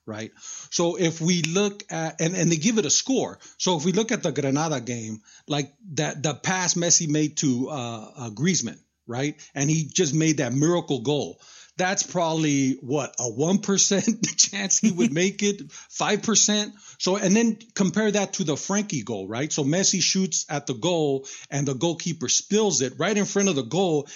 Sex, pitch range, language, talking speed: male, 140-190 Hz, English, 195 wpm